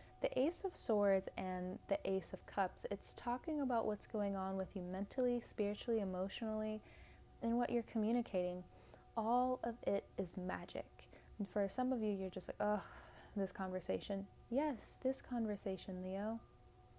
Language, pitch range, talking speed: English, 185-235 Hz, 155 wpm